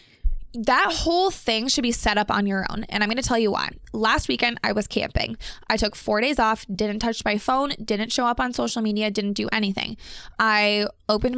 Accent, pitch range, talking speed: American, 210-240 Hz, 220 wpm